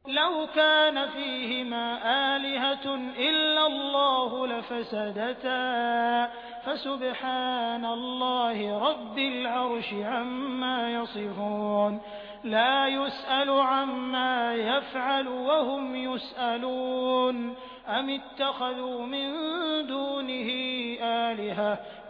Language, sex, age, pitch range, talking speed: Hindi, male, 20-39, 235-275 Hz, 65 wpm